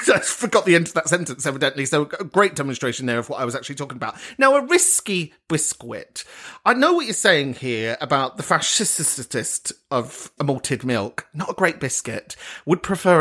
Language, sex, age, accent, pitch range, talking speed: English, male, 40-59, British, 135-190 Hz, 190 wpm